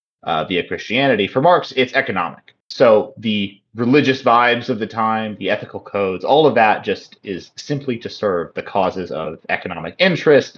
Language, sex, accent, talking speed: English, male, American, 170 wpm